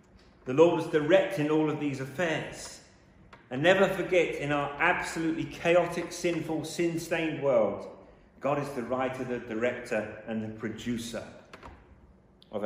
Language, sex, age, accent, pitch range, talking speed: English, male, 40-59, British, 110-150 Hz, 135 wpm